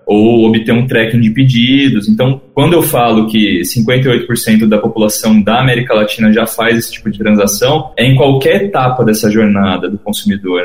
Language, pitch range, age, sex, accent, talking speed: Portuguese, 110-130 Hz, 20-39, male, Brazilian, 175 wpm